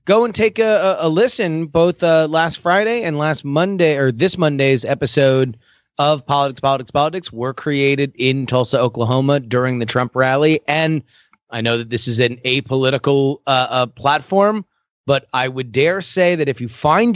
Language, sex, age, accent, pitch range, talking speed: English, male, 30-49, American, 130-160 Hz, 175 wpm